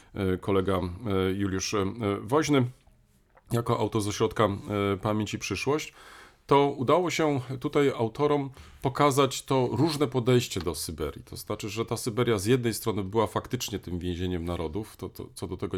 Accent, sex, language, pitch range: native, male, Polish, 95-120 Hz